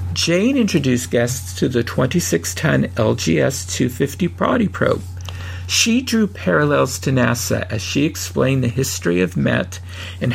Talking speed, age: 130 wpm, 50-69